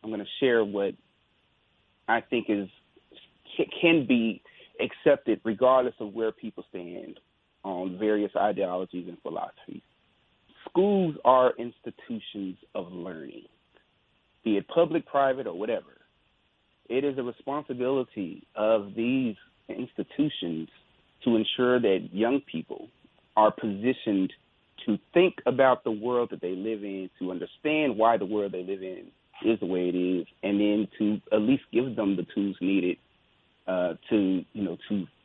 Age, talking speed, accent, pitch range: 30-49, 140 wpm, American, 100-130 Hz